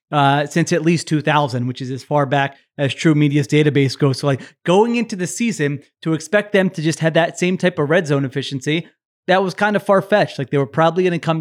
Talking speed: 245 wpm